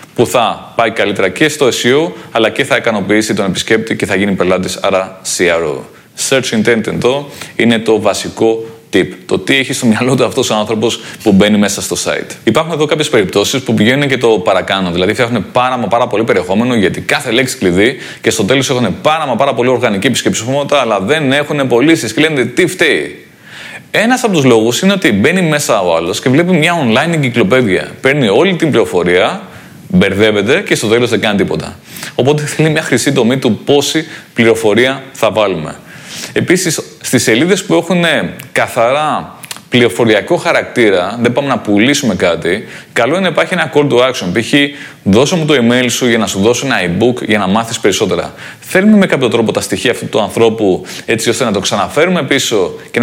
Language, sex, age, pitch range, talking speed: Greek, male, 30-49, 110-150 Hz, 190 wpm